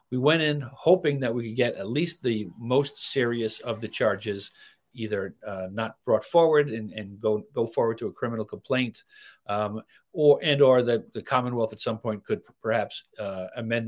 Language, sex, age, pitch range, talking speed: English, male, 50-69, 110-140 Hz, 190 wpm